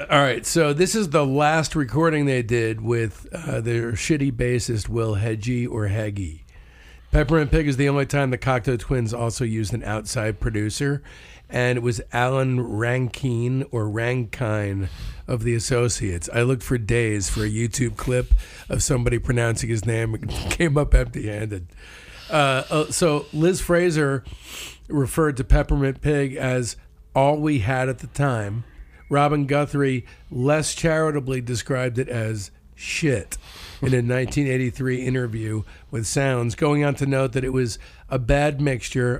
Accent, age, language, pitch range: American, 50-69, English, 110-140 Hz